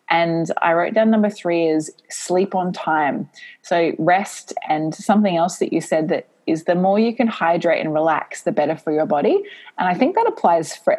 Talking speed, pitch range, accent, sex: 205 wpm, 155-190 Hz, Australian, female